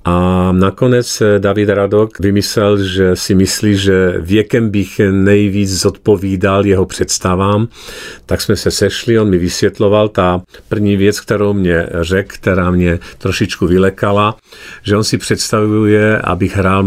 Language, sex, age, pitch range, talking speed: Czech, male, 50-69, 90-110 Hz, 135 wpm